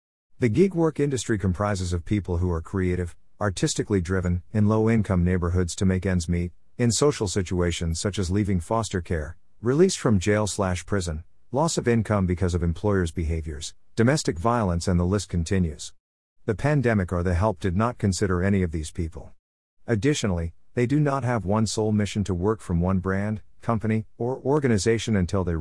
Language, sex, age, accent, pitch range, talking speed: English, male, 50-69, American, 90-115 Hz, 170 wpm